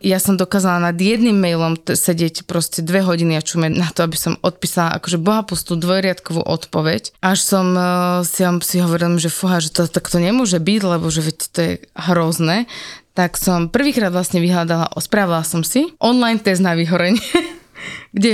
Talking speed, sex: 165 wpm, female